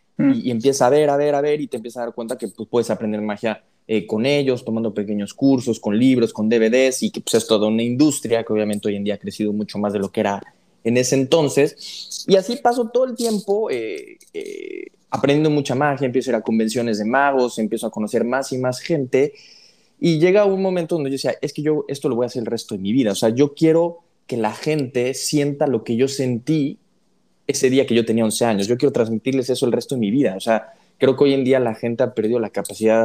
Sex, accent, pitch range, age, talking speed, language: male, Mexican, 110-145 Hz, 20-39, 255 wpm, Spanish